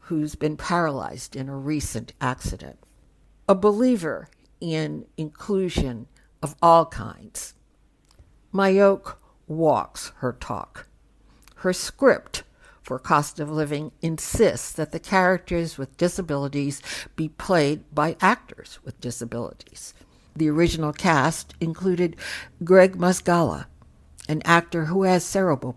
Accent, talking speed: American, 110 wpm